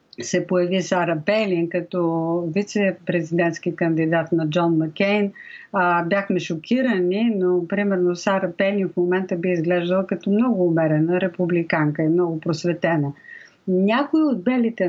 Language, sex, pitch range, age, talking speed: Bulgarian, female, 170-205 Hz, 50-69, 120 wpm